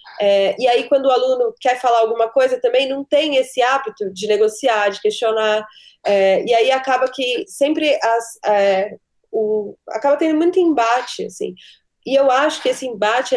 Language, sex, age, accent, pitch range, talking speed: Portuguese, female, 20-39, Brazilian, 210-275 Hz, 175 wpm